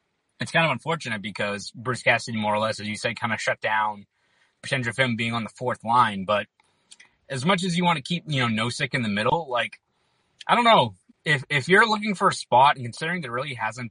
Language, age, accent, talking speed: English, 20-39, American, 235 wpm